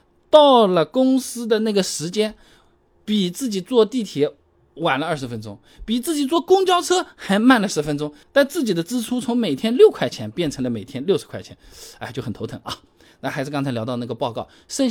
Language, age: Chinese, 20-39